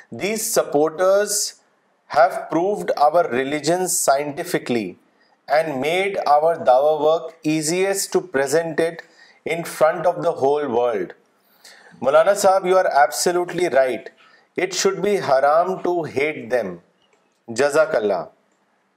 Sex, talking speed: male, 115 wpm